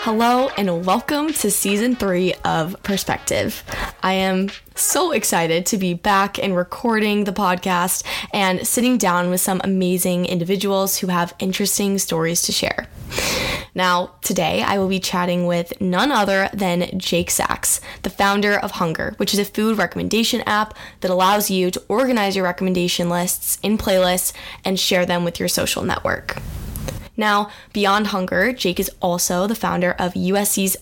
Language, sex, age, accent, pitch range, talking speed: English, female, 10-29, American, 180-205 Hz, 160 wpm